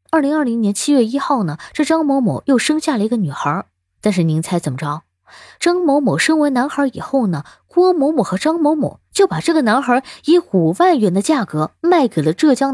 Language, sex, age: Chinese, female, 20-39